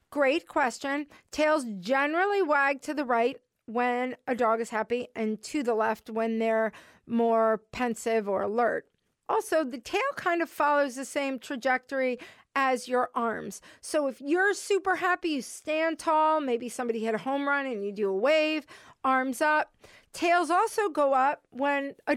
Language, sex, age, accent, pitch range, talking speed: English, female, 40-59, American, 245-320 Hz, 170 wpm